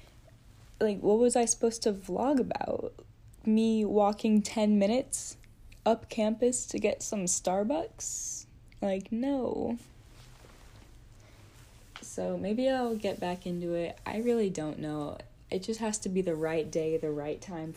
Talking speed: 140 wpm